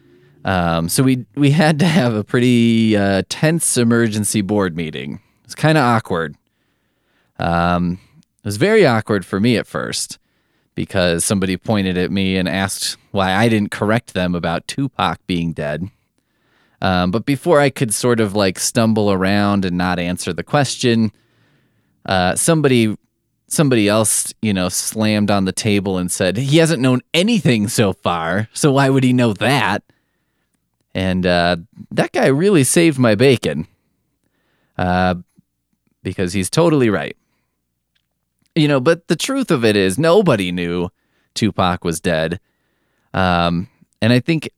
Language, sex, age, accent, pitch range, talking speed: English, male, 20-39, American, 90-125 Hz, 150 wpm